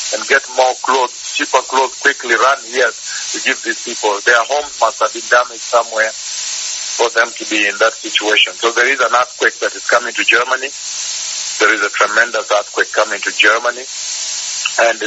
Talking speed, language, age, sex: 185 wpm, English, 50-69, male